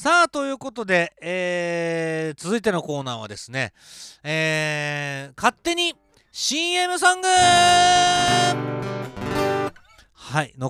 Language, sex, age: Japanese, male, 40-59